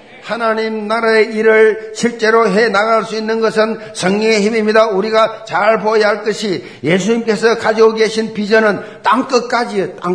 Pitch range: 195-230 Hz